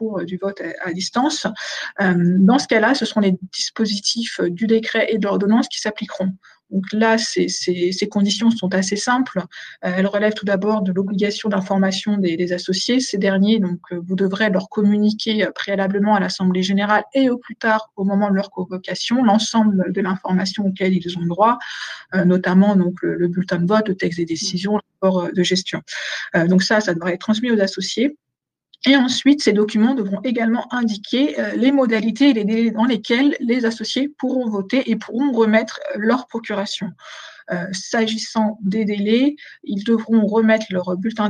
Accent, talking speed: French, 170 wpm